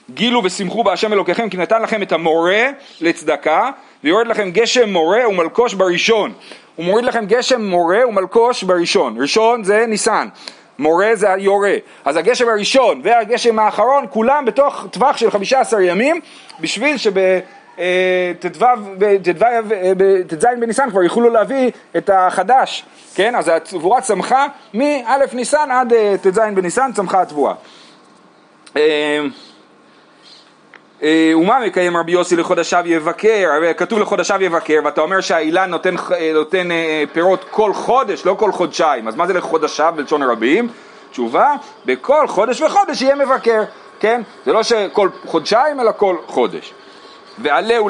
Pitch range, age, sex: 180-245 Hz, 40-59, male